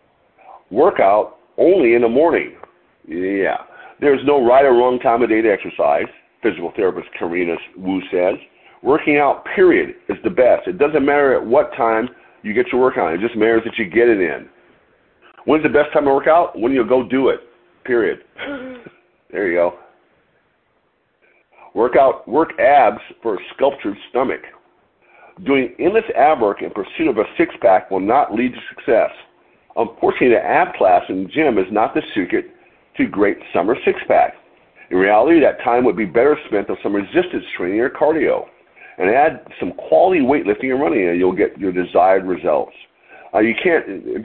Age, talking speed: 50-69, 175 wpm